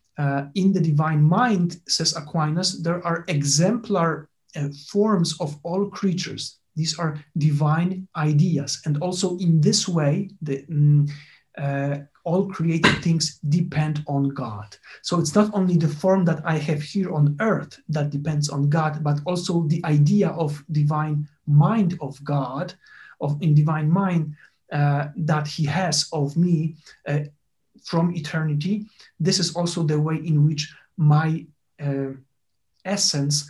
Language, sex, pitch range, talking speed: English, male, 145-180 Hz, 145 wpm